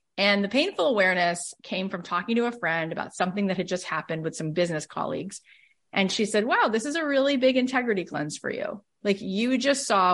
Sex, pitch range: female, 175-240 Hz